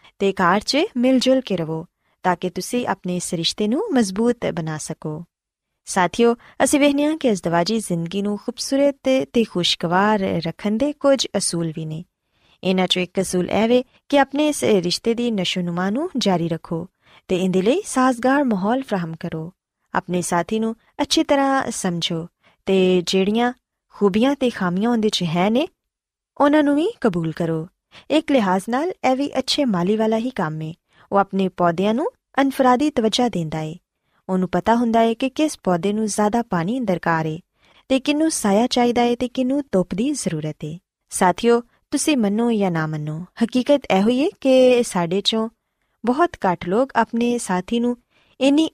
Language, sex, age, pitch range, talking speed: Punjabi, female, 20-39, 180-255 Hz, 165 wpm